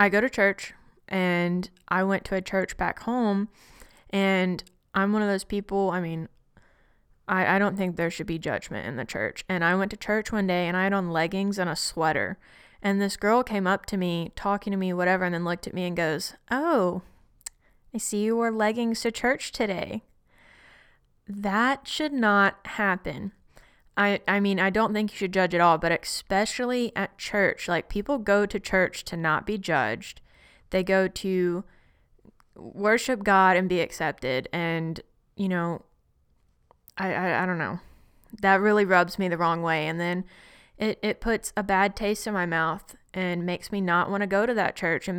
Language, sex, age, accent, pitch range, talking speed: English, female, 20-39, American, 175-210 Hz, 195 wpm